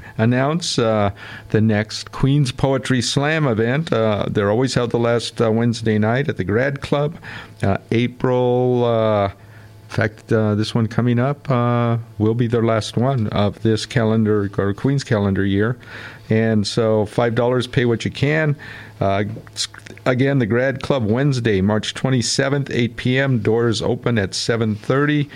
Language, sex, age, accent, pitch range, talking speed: English, male, 50-69, American, 105-125 Hz, 155 wpm